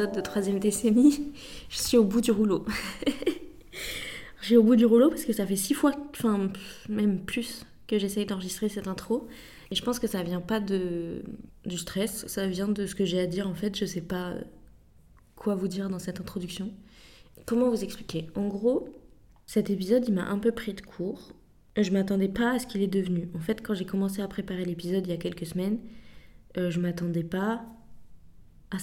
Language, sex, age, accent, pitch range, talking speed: French, female, 20-39, French, 180-215 Hz, 205 wpm